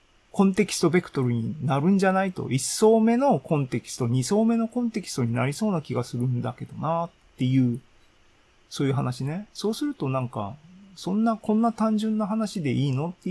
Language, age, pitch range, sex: Japanese, 30-49, 120-180 Hz, male